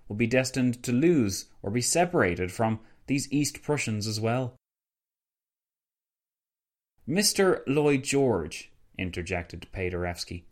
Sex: male